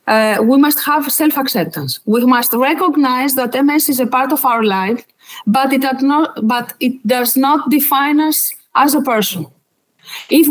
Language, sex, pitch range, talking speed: English, female, 205-295 Hz, 165 wpm